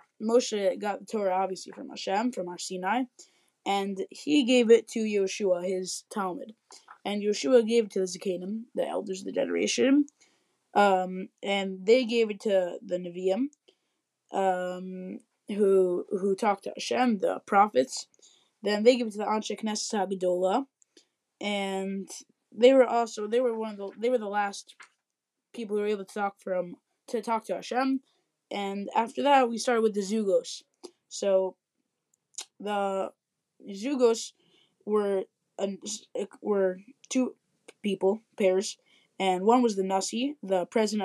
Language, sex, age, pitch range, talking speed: English, female, 20-39, 190-235 Hz, 150 wpm